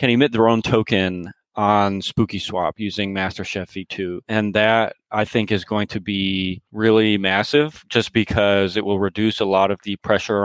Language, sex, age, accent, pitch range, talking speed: English, male, 30-49, American, 95-110 Hz, 170 wpm